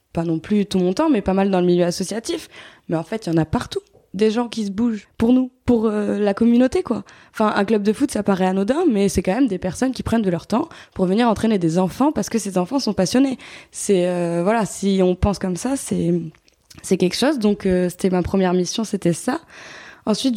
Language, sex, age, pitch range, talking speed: French, female, 20-39, 185-235 Hz, 245 wpm